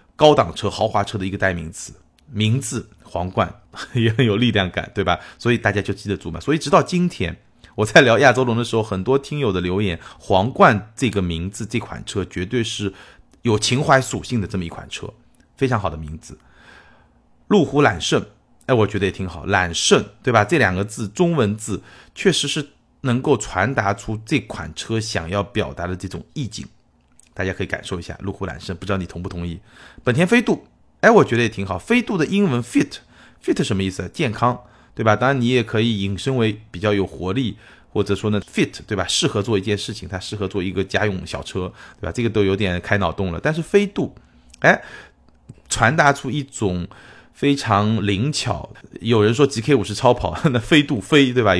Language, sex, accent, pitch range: Chinese, male, native, 95-125 Hz